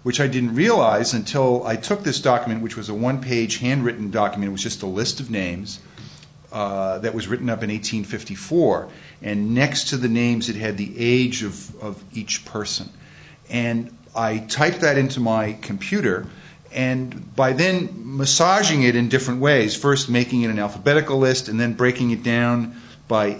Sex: male